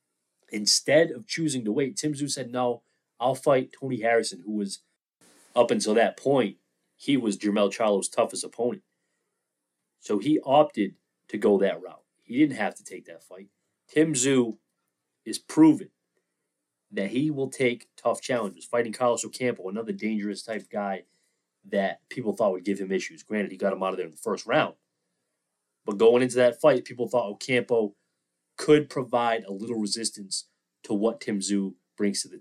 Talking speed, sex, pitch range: 175 wpm, male, 100-130 Hz